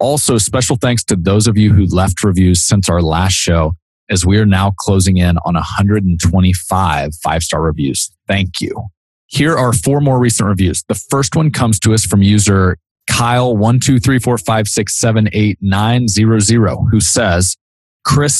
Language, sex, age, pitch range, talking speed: English, male, 30-49, 95-115 Hz, 145 wpm